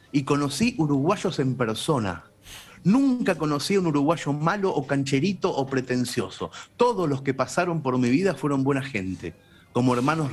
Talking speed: 155 wpm